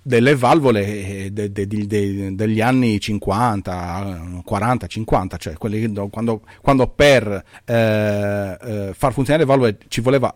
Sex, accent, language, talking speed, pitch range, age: male, native, Italian, 135 wpm, 100-125 Hz, 40-59